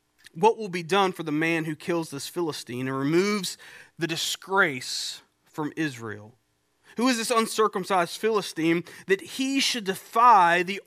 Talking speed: 150 wpm